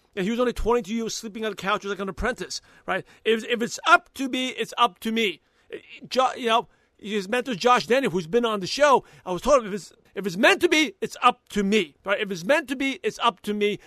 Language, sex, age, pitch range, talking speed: English, male, 40-59, 200-245 Hz, 265 wpm